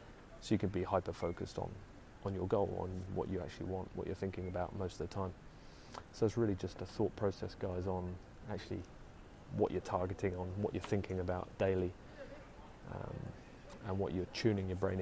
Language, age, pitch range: English, 30-49, 90-100 Hz